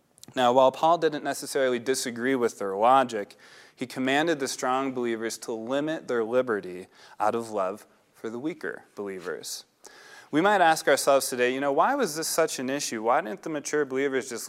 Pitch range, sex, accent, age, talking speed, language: 115-155 Hz, male, American, 30-49, 180 wpm, English